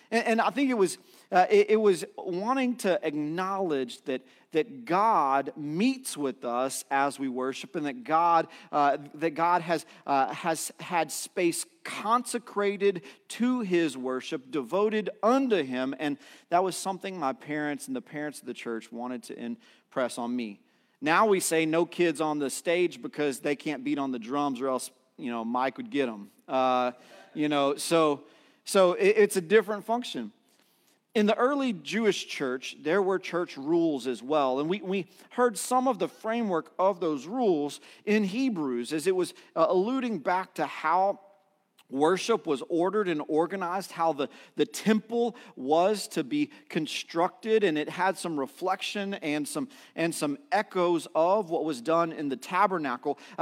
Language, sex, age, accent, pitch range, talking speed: English, male, 40-59, American, 145-205 Hz, 165 wpm